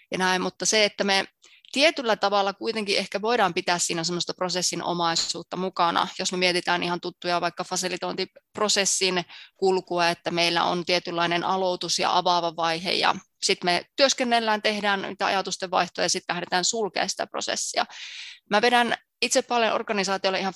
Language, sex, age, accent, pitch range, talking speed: Finnish, female, 20-39, native, 180-210 Hz, 150 wpm